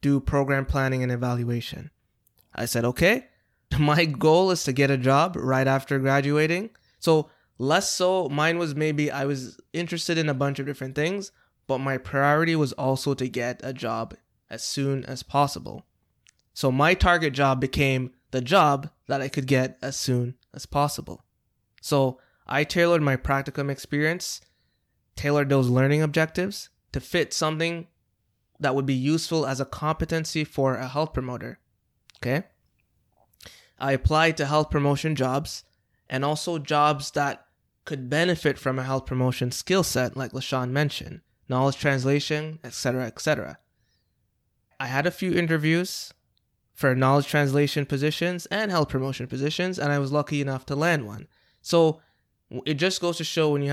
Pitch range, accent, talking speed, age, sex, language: 130-155 Hz, American, 155 wpm, 20-39, male, English